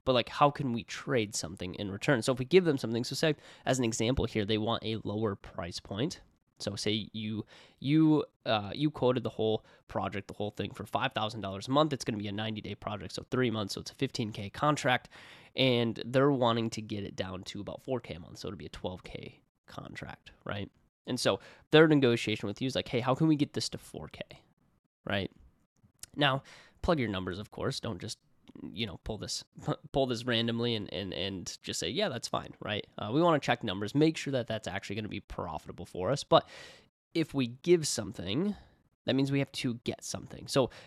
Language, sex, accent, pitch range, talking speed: English, male, American, 105-135 Hz, 220 wpm